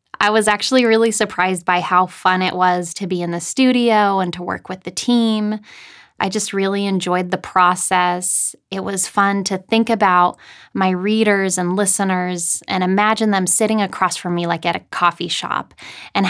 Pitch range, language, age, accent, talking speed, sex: 180-225 Hz, English, 10-29, American, 185 wpm, female